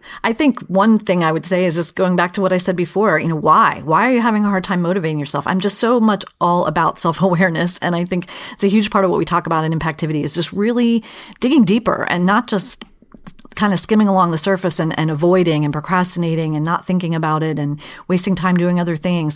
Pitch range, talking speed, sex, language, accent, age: 170-220 Hz, 245 wpm, female, English, American, 40-59